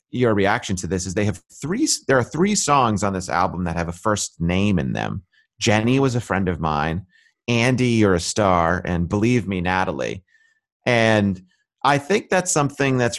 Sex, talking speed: male, 190 wpm